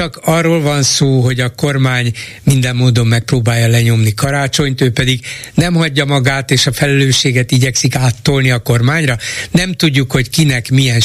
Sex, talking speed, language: male, 160 wpm, Hungarian